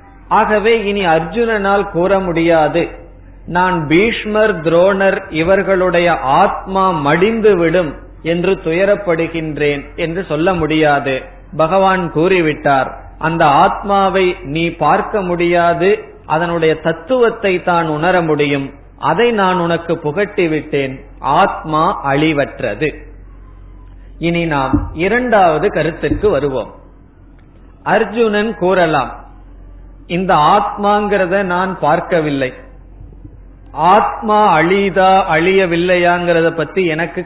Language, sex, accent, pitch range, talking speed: Tamil, male, native, 155-195 Hz, 80 wpm